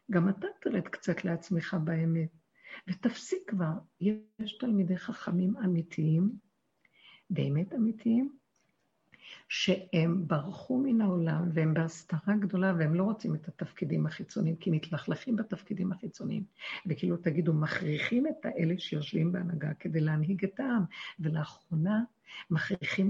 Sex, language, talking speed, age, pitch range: female, Hebrew, 115 wpm, 60-79, 165-200 Hz